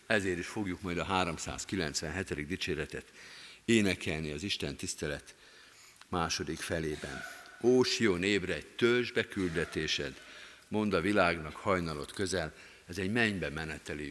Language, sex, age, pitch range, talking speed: Hungarian, male, 50-69, 90-125 Hz, 110 wpm